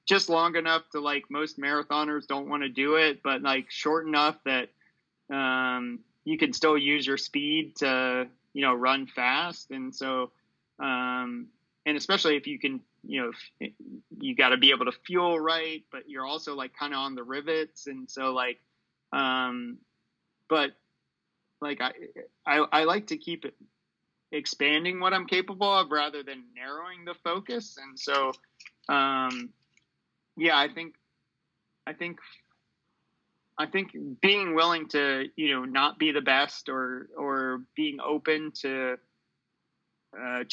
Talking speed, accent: 155 wpm, American